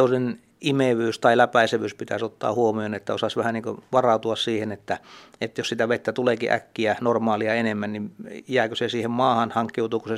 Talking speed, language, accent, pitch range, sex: 170 wpm, Finnish, native, 110-120 Hz, male